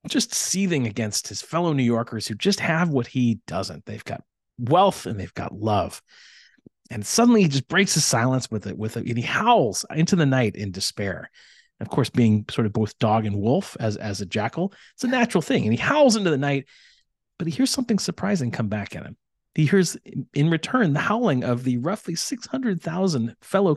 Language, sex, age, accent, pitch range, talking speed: English, male, 30-49, American, 110-170 Hz, 205 wpm